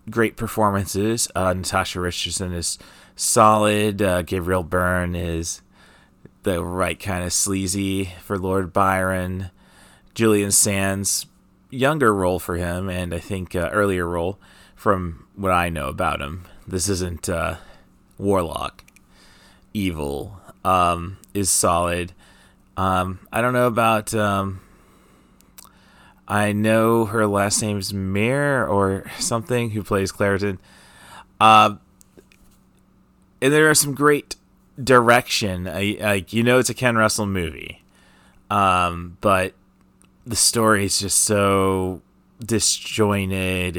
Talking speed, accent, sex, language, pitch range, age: 120 wpm, American, male, English, 90-110 Hz, 30-49